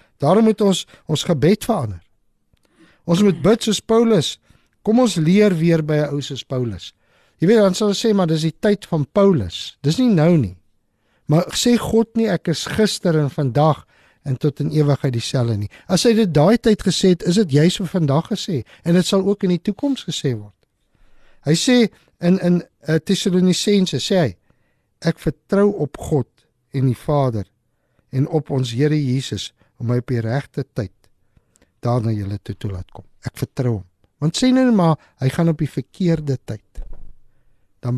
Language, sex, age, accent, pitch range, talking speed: English, male, 60-79, Dutch, 120-180 Hz, 185 wpm